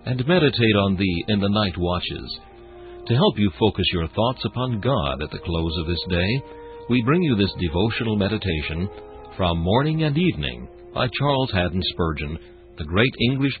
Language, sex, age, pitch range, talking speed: English, male, 60-79, 85-115 Hz, 170 wpm